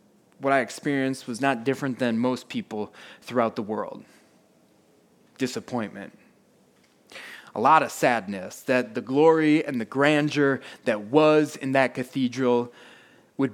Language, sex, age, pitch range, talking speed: English, male, 20-39, 120-150 Hz, 130 wpm